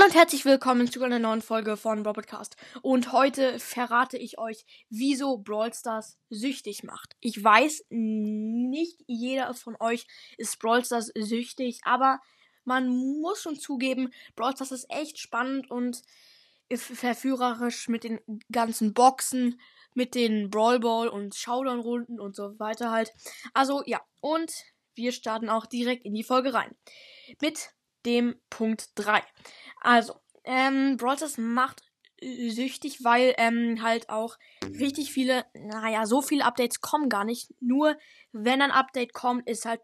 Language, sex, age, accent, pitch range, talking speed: German, female, 10-29, German, 225-265 Hz, 145 wpm